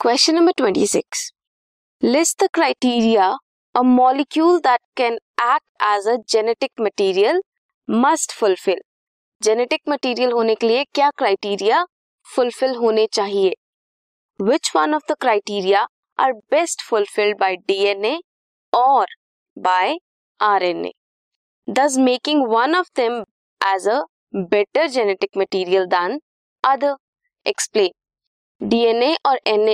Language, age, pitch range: English, 20-39, 215-315 Hz